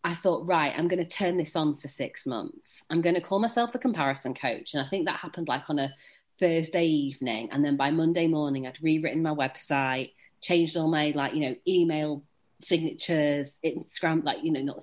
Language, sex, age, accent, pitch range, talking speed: English, female, 30-49, British, 145-170 Hz, 200 wpm